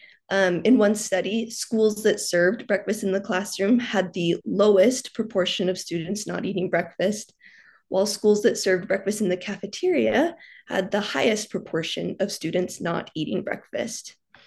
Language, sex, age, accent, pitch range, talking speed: English, female, 20-39, American, 180-225 Hz, 155 wpm